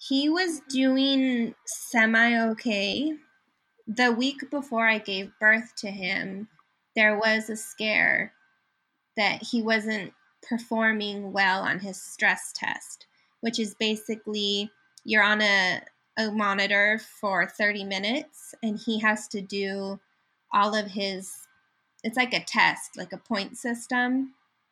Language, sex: English, female